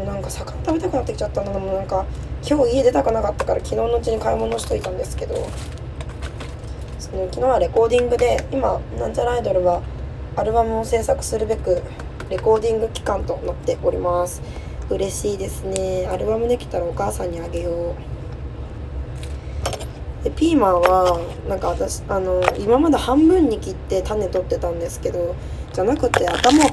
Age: 20-39